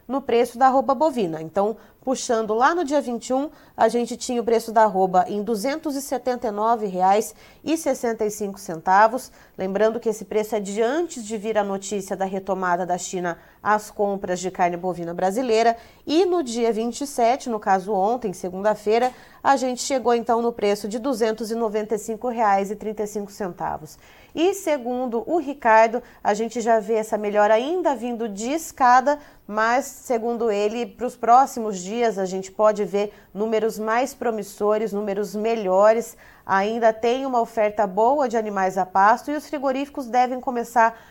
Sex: female